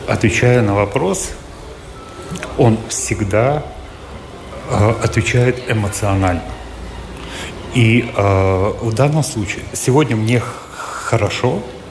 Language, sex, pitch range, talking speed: Russian, male, 95-115 Hz, 80 wpm